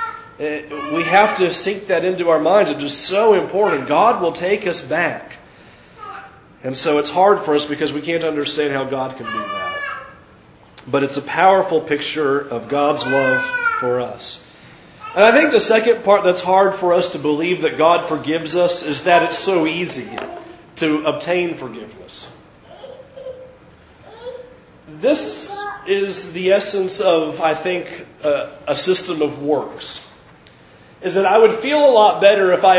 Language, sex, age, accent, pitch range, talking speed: English, male, 40-59, American, 170-245 Hz, 160 wpm